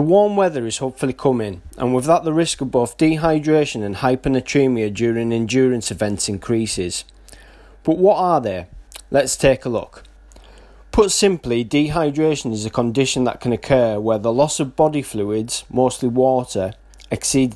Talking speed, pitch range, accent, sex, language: 155 wpm, 115-150 Hz, British, male, English